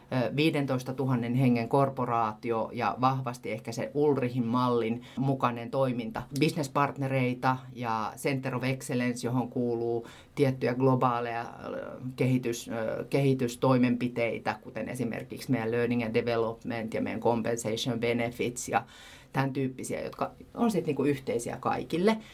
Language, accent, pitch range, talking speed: Finnish, native, 120-145 Hz, 115 wpm